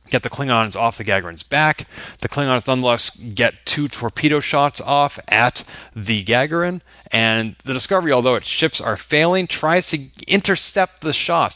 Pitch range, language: 110-145 Hz, English